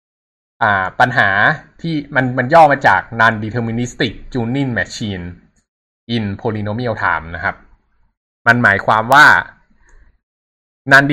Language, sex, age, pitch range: Thai, male, 20-39, 100-130 Hz